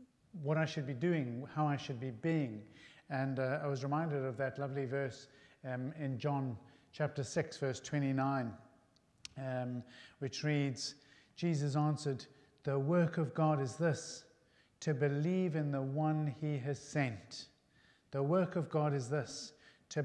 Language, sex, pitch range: English, male, 135-160 Hz